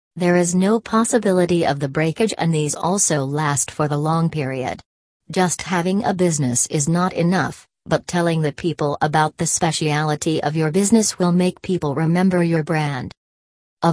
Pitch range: 150-180 Hz